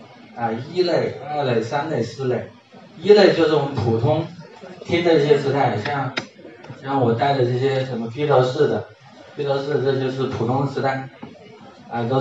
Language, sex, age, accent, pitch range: Chinese, male, 20-39, native, 115-140 Hz